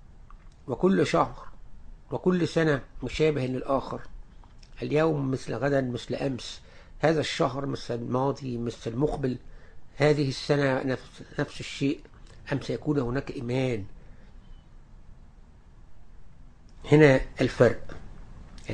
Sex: male